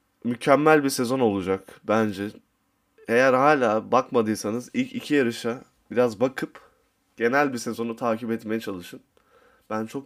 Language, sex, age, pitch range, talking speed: Turkish, male, 20-39, 105-135 Hz, 125 wpm